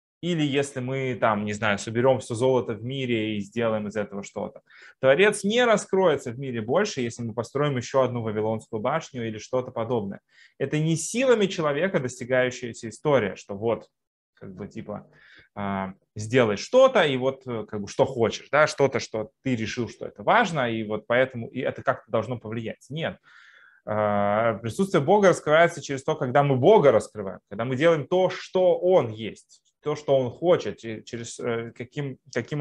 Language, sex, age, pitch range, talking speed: Russian, male, 20-39, 115-140 Hz, 165 wpm